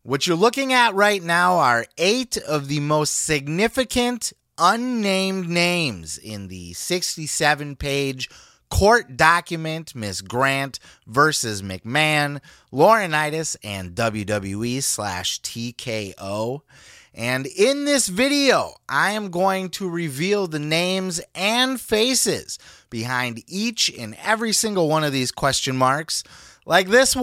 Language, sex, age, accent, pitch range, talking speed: English, male, 30-49, American, 130-205 Hz, 115 wpm